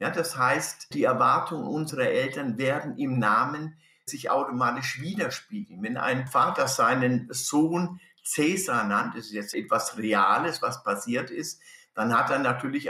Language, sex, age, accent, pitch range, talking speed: German, male, 60-79, German, 125-180 Hz, 150 wpm